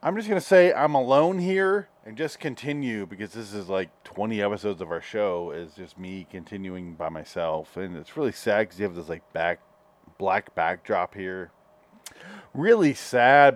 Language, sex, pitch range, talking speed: English, male, 110-160 Hz, 180 wpm